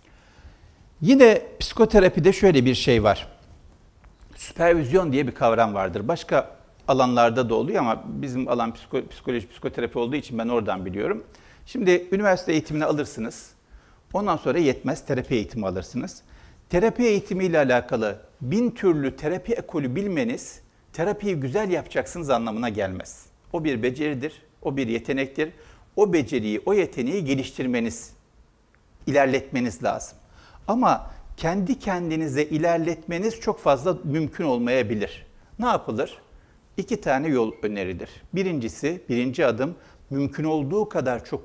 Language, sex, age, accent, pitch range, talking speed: Turkish, male, 60-79, native, 115-170 Hz, 120 wpm